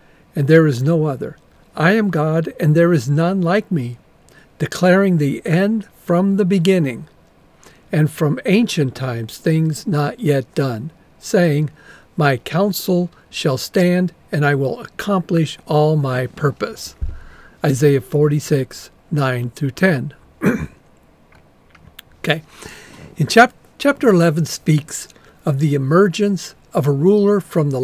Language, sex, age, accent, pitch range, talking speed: English, male, 50-69, American, 140-180 Hz, 125 wpm